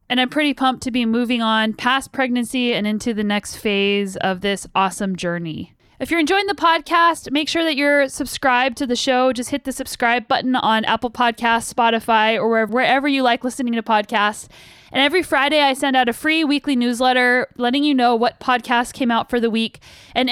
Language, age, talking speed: English, 10-29, 205 wpm